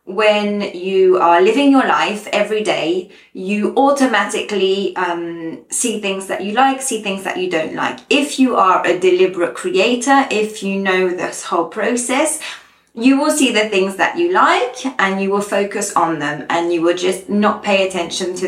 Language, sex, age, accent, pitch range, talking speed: English, female, 20-39, British, 185-230 Hz, 180 wpm